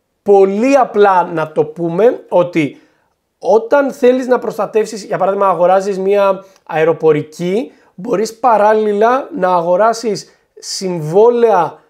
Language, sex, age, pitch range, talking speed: Greek, male, 30-49, 175-255 Hz, 100 wpm